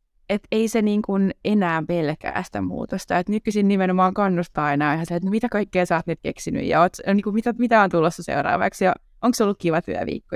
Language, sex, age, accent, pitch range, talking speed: Finnish, female, 20-39, native, 160-205 Hz, 205 wpm